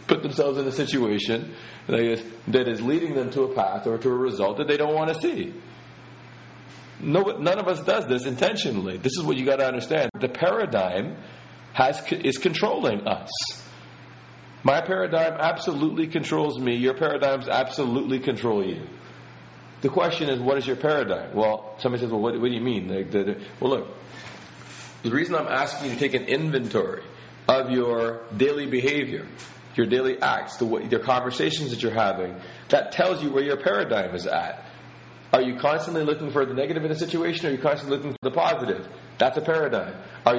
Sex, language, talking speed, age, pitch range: male, English, 190 wpm, 40-59, 120-150 Hz